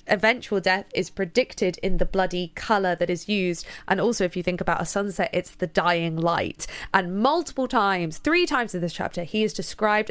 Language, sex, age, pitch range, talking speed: English, female, 20-39, 180-225 Hz, 200 wpm